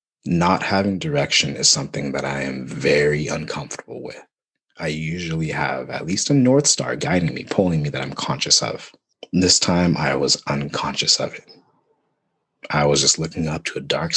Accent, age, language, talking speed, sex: American, 30-49, English, 180 wpm, male